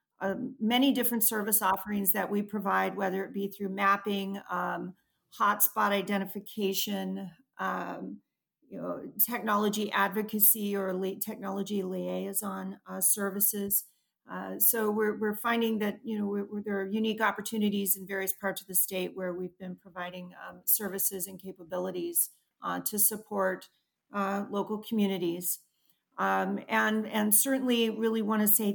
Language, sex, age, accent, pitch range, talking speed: English, female, 40-59, American, 195-215 Hz, 130 wpm